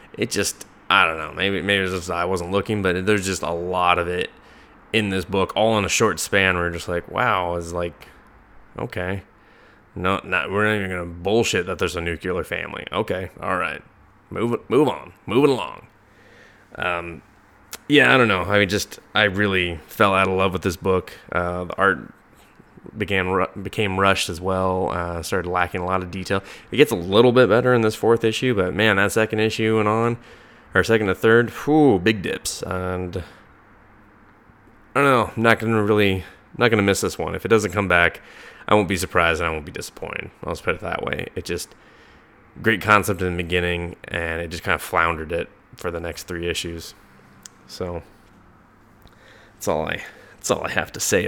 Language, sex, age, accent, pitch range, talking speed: English, male, 20-39, American, 90-110 Hz, 200 wpm